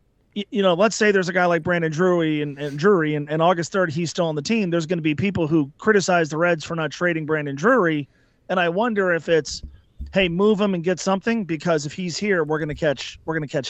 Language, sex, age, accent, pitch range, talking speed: English, male, 30-49, American, 150-190 Hz, 260 wpm